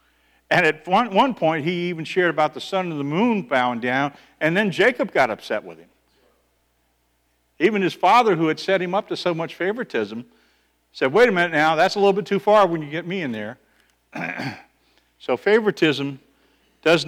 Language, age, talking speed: English, 50-69, 190 wpm